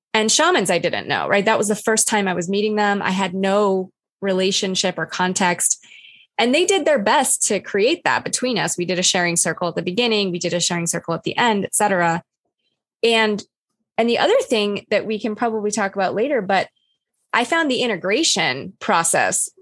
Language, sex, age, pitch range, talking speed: English, female, 20-39, 180-225 Hz, 205 wpm